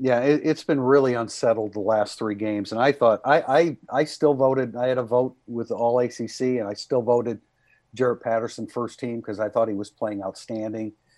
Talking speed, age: 210 wpm, 50-69